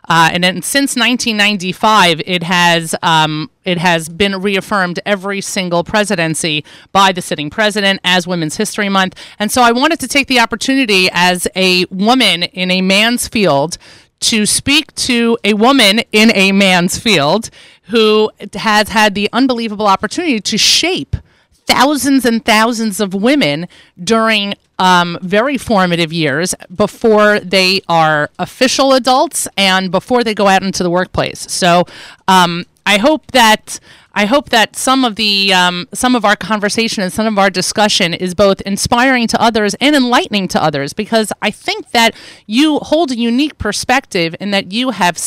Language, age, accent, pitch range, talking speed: English, 30-49, American, 185-235 Hz, 160 wpm